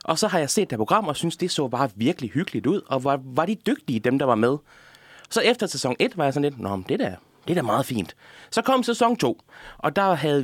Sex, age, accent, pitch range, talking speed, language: male, 30-49, native, 125-200 Hz, 275 wpm, Danish